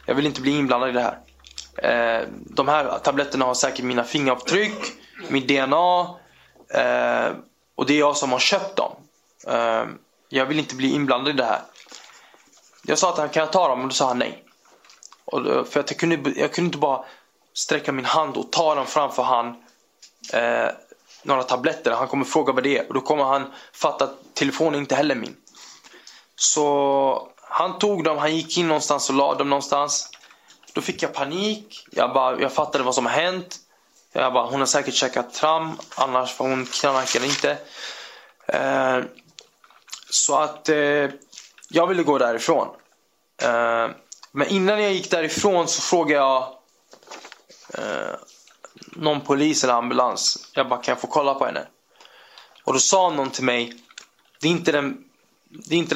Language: Swedish